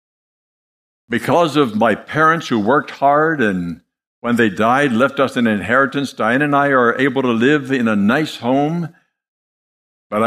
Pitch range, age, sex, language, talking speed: 100-145 Hz, 60-79, male, English, 160 wpm